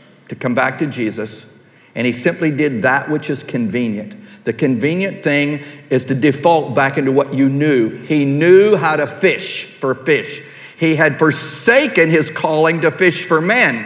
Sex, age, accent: male, 50-69, American